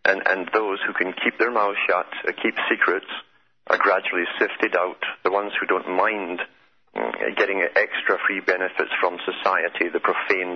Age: 50-69